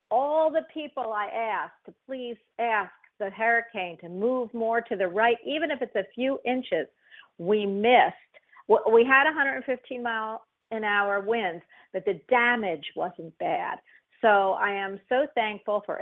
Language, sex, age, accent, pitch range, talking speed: English, female, 50-69, American, 185-245 Hz, 155 wpm